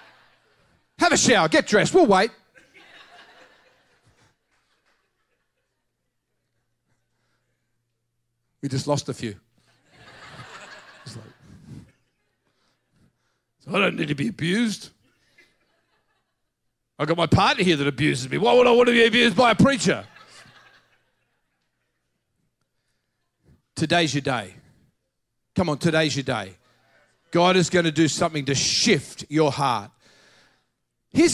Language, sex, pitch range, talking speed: English, male, 135-215 Hz, 110 wpm